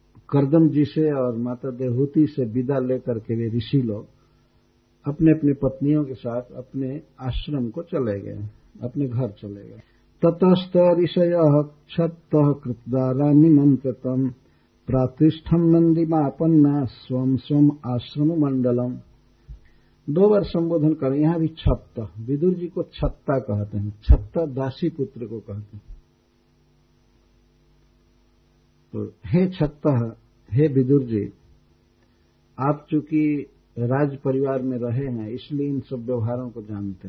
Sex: male